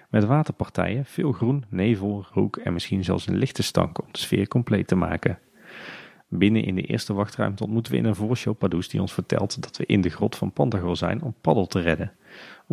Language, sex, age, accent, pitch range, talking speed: Dutch, male, 40-59, Dutch, 90-115 Hz, 210 wpm